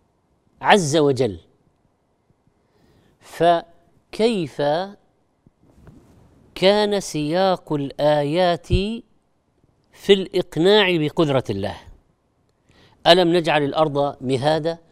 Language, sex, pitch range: Arabic, female, 145-190 Hz